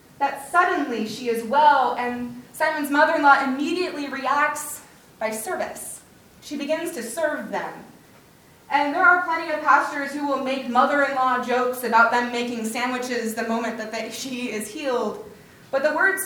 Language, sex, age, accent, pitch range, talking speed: English, female, 20-39, American, 245-300 Hz, 150 wpm